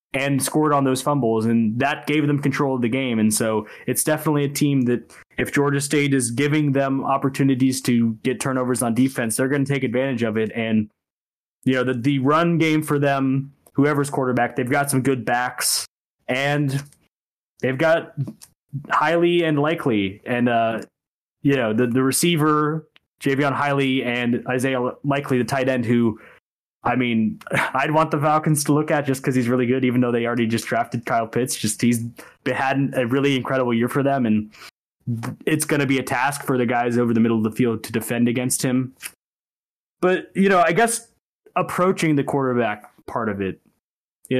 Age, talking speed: 20-39, 190 wpm